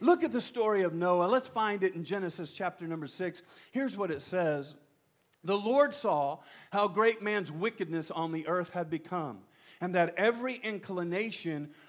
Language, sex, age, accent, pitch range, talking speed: English, male, 50-69, American, 145-190 Hz, 170 wpm